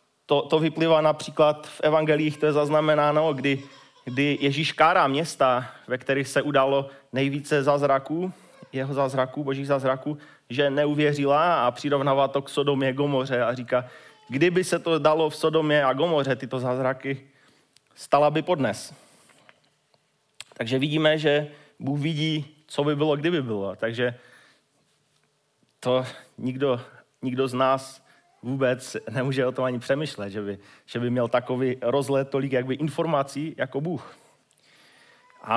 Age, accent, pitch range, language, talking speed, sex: 30-49, native, 130-155 Hz, Czech, 140 wpm, male